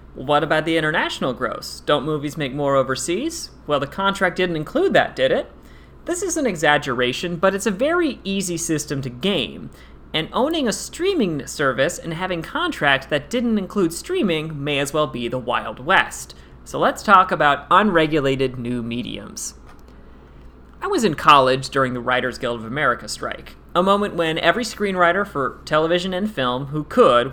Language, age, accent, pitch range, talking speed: English, 30-49, American, 130-185 Hz, 170 wpm